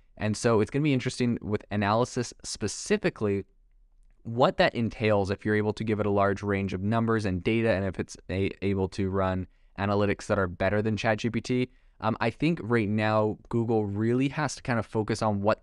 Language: English